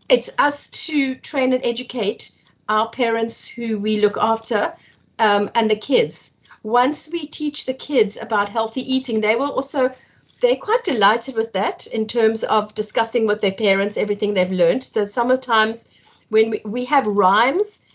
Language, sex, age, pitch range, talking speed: English, female, 50-69, 210-260 Hz, 165 wpm